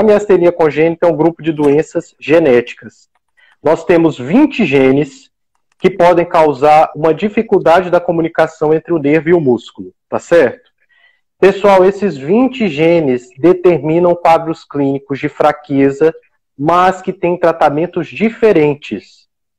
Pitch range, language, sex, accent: 160-210 Hz, Portuguese, male, Brazilian